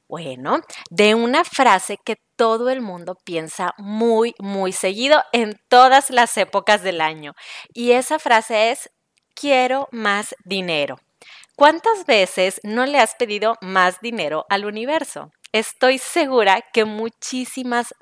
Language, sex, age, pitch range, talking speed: Spanish, female, 30-49, 195-250 Hz, 130 wpm